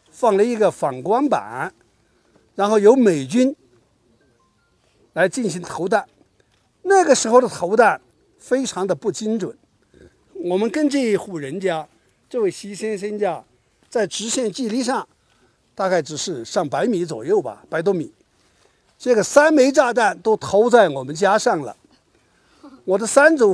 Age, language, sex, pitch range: 60-79, Chinese, male, 195-275 Hz